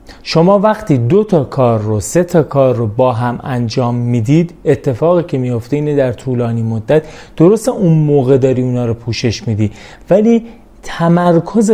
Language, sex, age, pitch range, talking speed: Persian, male, 30-49, 125-170 Hz, 160 wpm